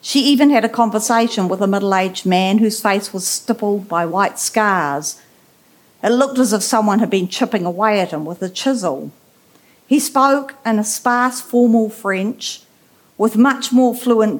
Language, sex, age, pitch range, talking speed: English, female, 50-69, 190-235 Hz, 170 wpm